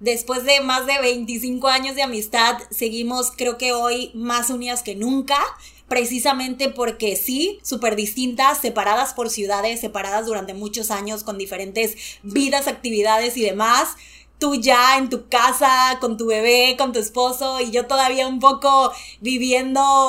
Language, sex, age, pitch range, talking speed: Spanish, female, 20-39, 225-280 Hz, 150 wpm